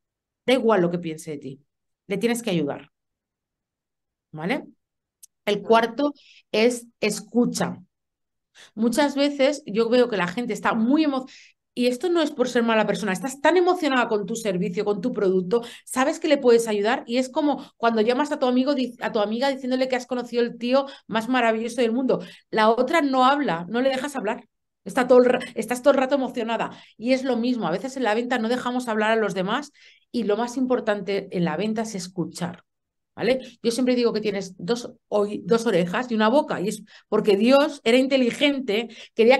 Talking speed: 185 wpm